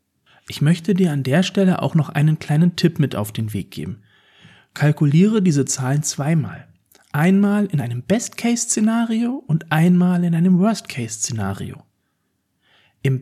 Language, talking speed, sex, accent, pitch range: German, 135 wpm, male, German, 130-185 Hz